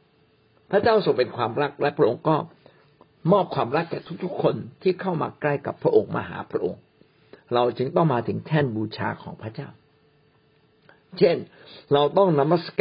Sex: male